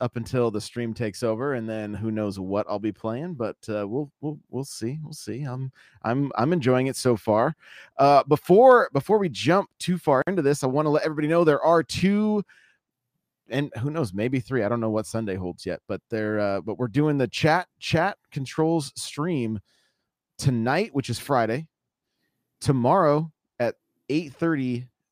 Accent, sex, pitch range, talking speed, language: American, male, 110-140 Hz, 185 wpm, English